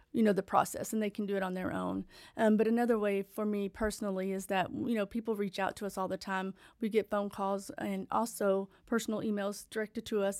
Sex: female